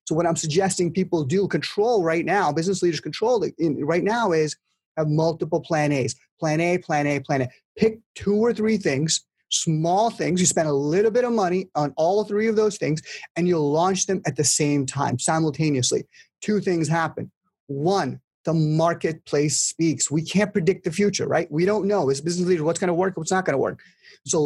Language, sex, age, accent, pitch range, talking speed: English, male, 30-49, American, 155-195 Hz, 210 wpm